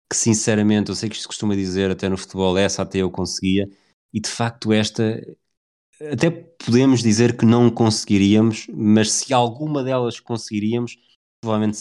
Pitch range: 90-105 Hz